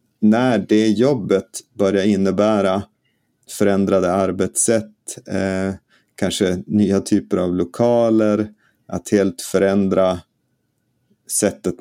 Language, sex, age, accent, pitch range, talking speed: Swedish, male, 30-49, native, 95-110 Hz, 85 wpm